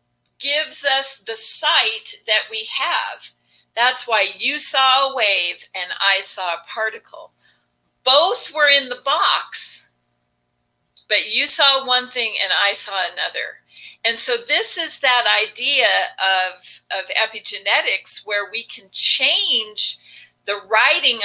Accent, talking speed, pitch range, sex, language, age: American, 135 wpm, 205-290 Hz, female, English, 40-59